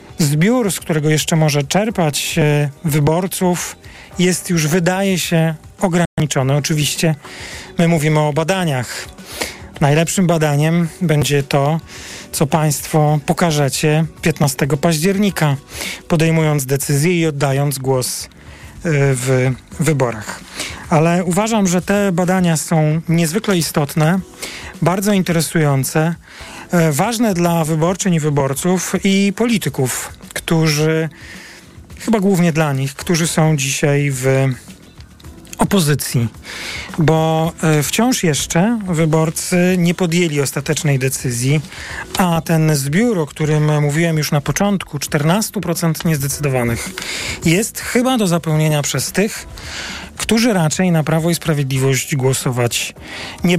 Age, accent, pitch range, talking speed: 40-59, native, 145-180 Hz, 105 wpm